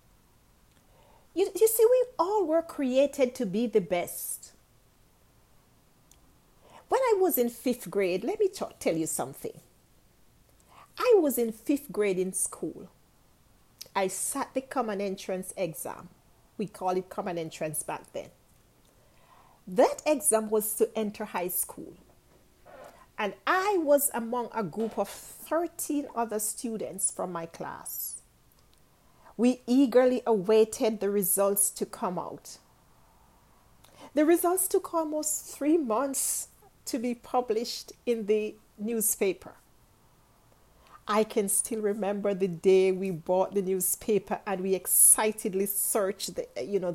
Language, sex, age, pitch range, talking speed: English, female, 40-59, 190-260 Hz, 125 wpm